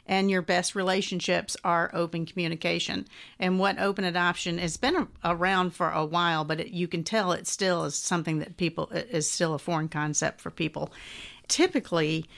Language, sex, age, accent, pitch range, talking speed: English, female, 50-69, American, 165-185 Hz, 170 wpm